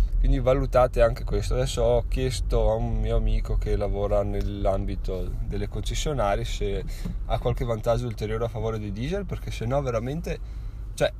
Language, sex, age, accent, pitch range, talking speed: Italian, male, 20-39, native, 95-120 Hz, 160 wpm